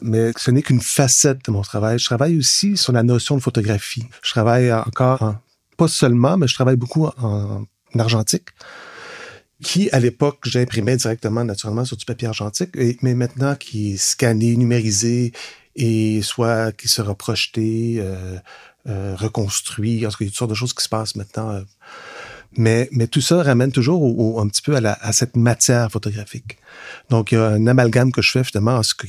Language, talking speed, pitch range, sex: French, 190 wpm, 105-125 Hz, male